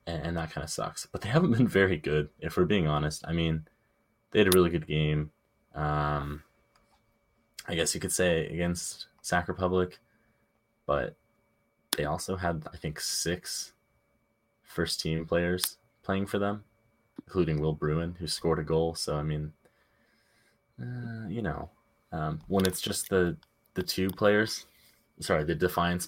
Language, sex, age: English, male, 20-39